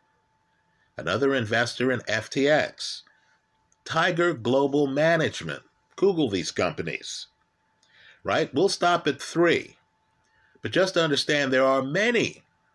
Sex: male